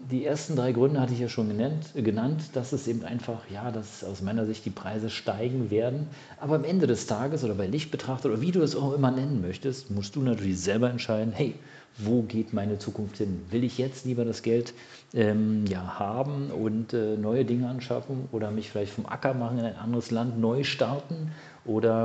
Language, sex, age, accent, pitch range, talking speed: German, male, 40-59, German, 105-130 Hz, 210 wpm